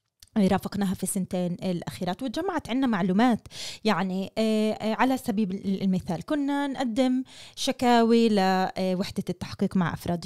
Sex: female